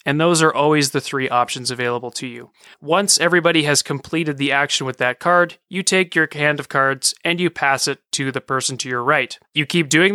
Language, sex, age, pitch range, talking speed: English, male, 30-49, 130-165 Hz, 225 wpm